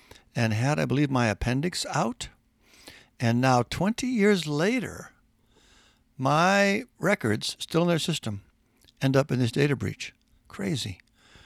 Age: 60-79